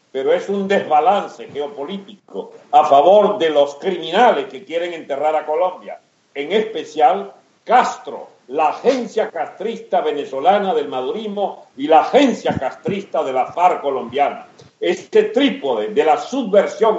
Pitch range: 155-220 Hz